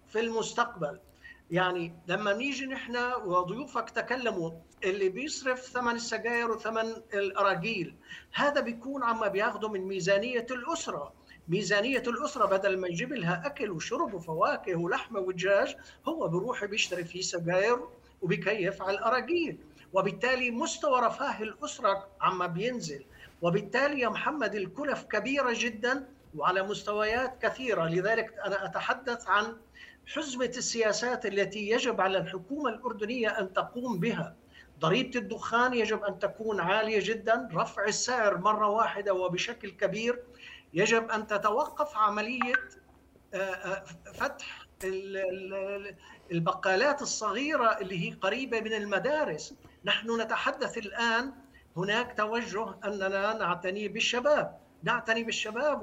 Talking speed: 110 wpm